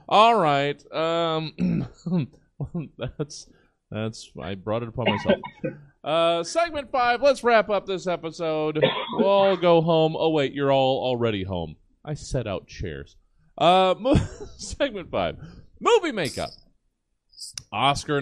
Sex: male